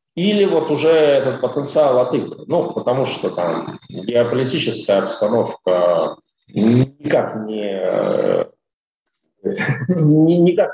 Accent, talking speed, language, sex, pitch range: native, 75 wpm, Russian, male, 110-170 Hz